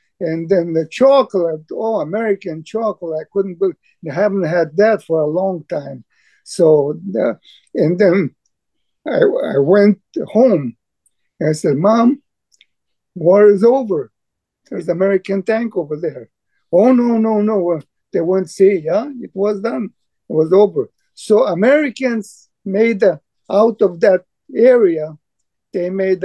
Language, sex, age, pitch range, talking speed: English, male, 50-69, 165-215 Hz, 145 wpm